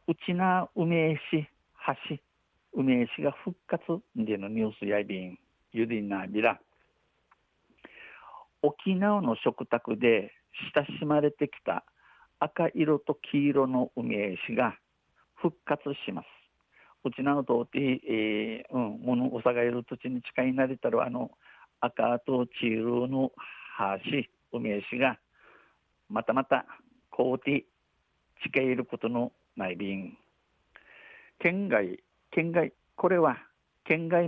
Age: 50-69